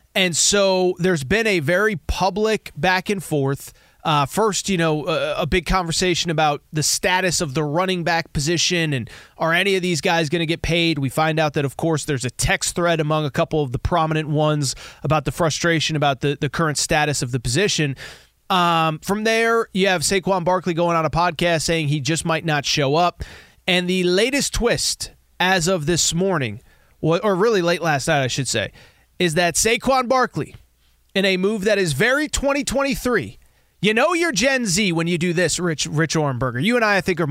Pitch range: 155-205 Hz